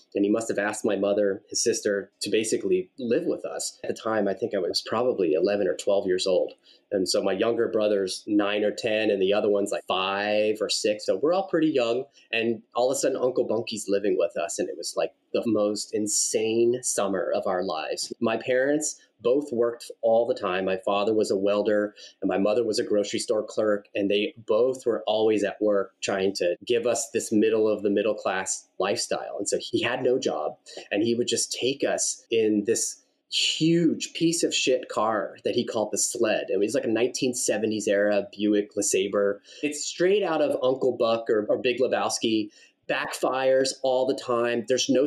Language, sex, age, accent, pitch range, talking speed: English, male, 30-49, American, 105-165 Hz, 210 wpm